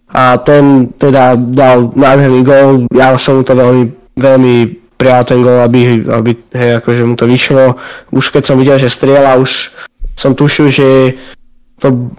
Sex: male